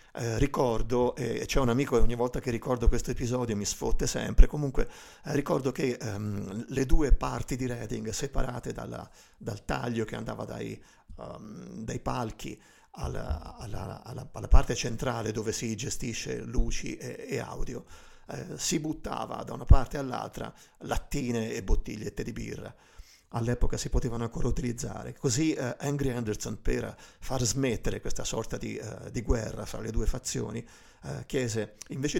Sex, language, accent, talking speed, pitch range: male, Italian, native, 150 wpm, 110-130 Hz